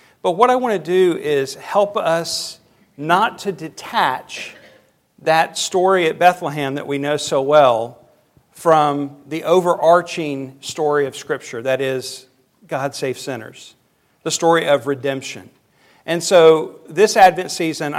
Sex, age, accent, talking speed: male, 50-69, American, 135 wpm